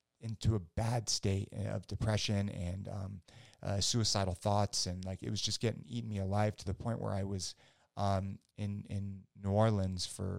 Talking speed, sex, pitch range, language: 185 wpm, male, 90-105 Hz, English